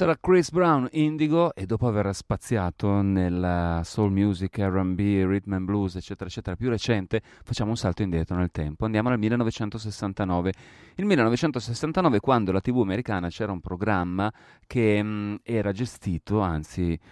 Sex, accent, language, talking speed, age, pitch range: male, native, Italian, 150 wpm, 30-49, 95-115 Hz